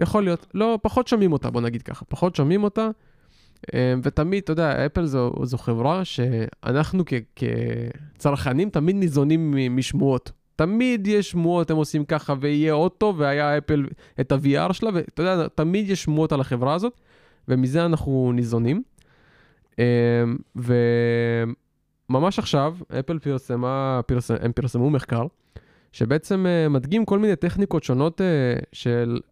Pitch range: 125-170 Hz